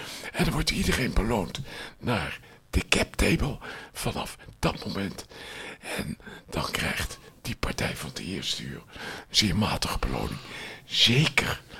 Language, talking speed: Dutch, 130 wpm